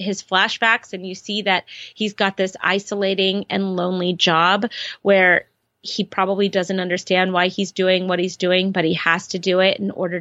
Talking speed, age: 190 wpm, 30-49